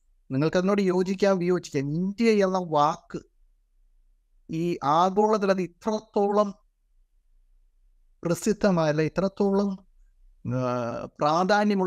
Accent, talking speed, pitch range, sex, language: native, 65 wpm, 135-190 Hz, male, Malayalam